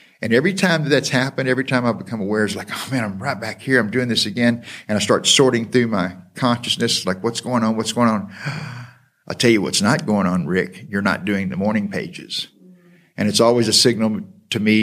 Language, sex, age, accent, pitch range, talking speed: English, male, 50-69, American, 105-125 Hz, 235 wpm